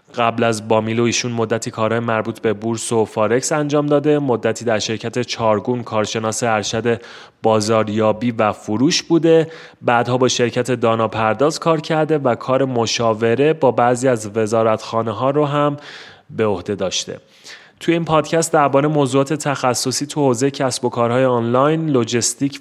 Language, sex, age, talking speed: Persian, male, 30-49, 145 wpm